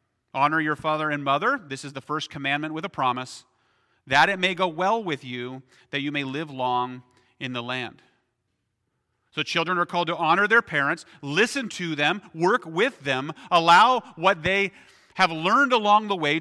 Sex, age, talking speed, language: male, 40-59, 185 wpm, English